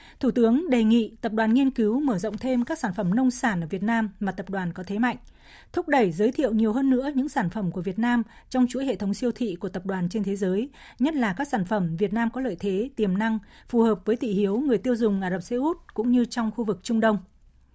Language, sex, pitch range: Vietnamese, female, 205-250 Hz